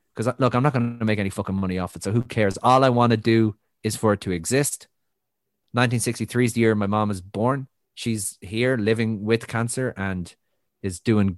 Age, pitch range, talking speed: 30-49, 100-125 Hz, 215 wpm